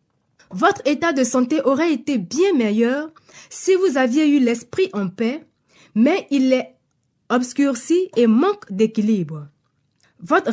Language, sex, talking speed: French, female, 130 wpm